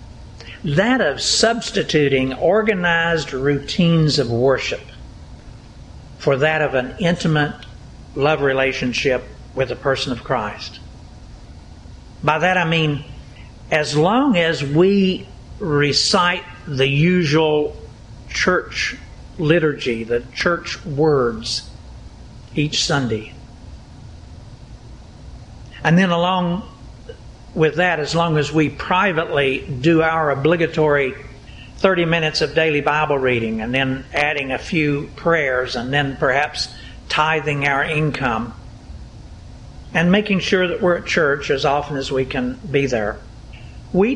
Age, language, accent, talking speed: 60-79, English, American, 115 wpm